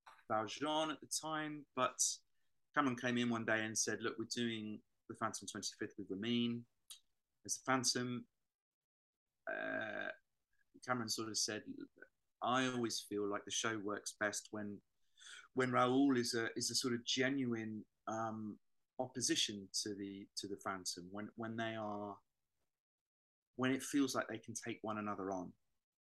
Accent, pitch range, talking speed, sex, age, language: British, 100-125 Hz, 155 wpm, male, 30-49, English